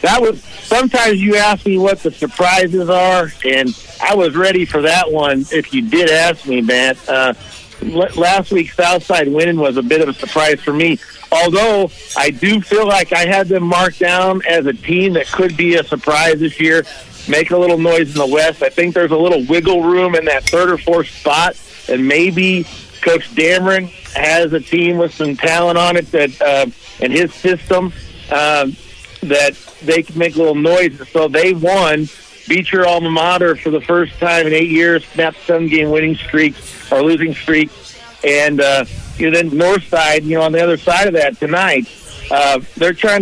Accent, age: American, 50-69